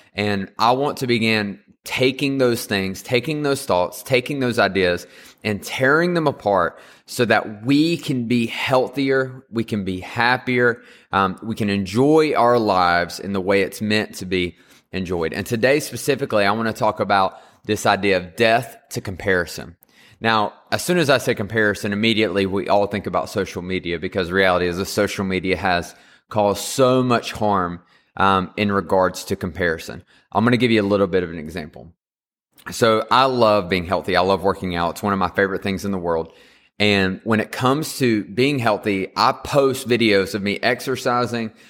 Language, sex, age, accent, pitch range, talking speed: English, male, 20-39, American, 95-120 Hz, 185 wpm